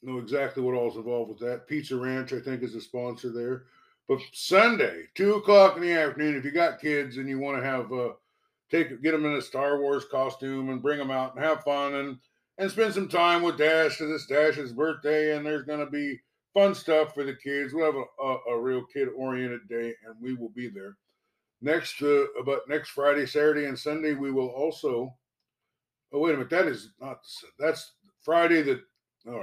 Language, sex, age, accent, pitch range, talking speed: English, male, 60-79, American, 130-165 Hz, 220 wpm